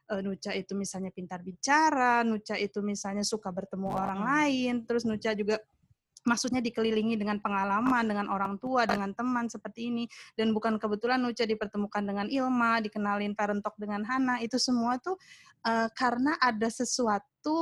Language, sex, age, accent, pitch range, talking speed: Indonesian, female, 20-39, native, 205-245 Hz, 145 wpm